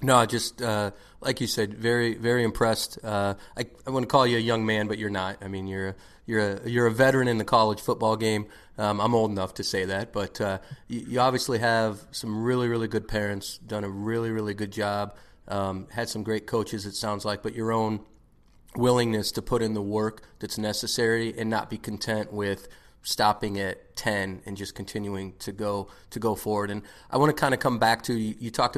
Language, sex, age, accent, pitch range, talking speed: English, male, 30-49, American, 100-115 Hz, 225 wpm